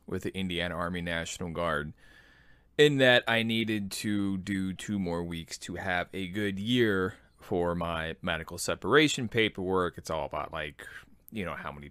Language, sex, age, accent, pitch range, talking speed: English, male, 20-39, American, 85-115 Hz, 165 wpm